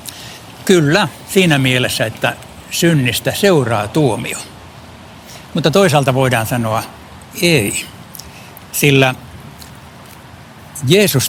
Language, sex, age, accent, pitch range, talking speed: Finnish, male, 60-79, native, 120-155 Hz, 75 wpm